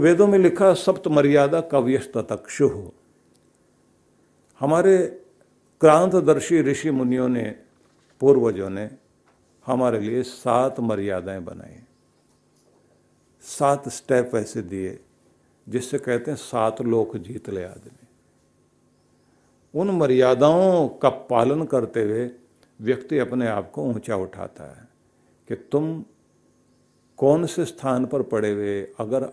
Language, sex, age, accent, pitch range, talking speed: Hindi, male, 50-69, native, 110-140 Hz, 110 wpm